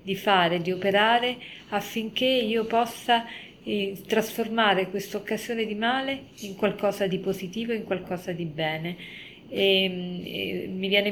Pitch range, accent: 180-205 Hz, native